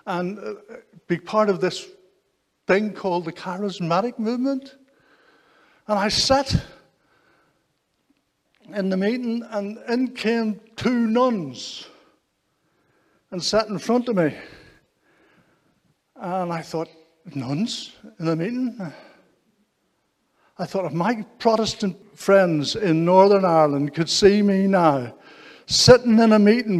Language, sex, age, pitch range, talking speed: English, male, 60-79, 190-245 Hz, 115 wpm